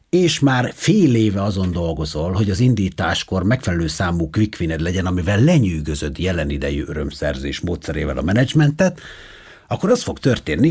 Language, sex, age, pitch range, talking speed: Hungarian, male, 60-79, 90-130 Hz, 140 wpm